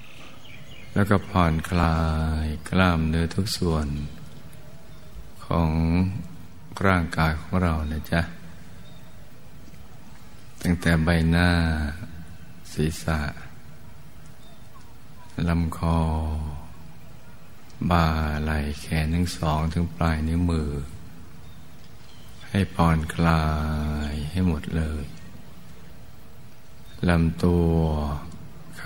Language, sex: Thai, male